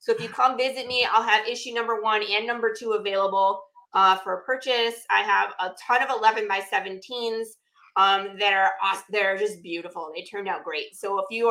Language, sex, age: English, female, 30-49